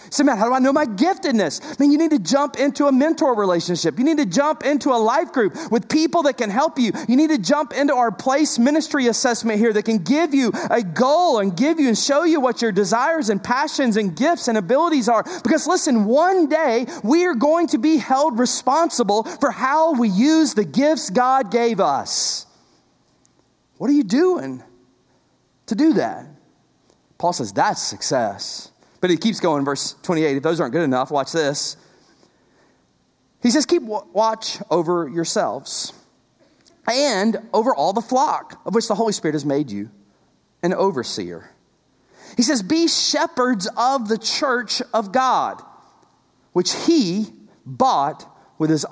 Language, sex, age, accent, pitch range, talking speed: English, male, 30-49, American, 195-290 Hz, 175 wpm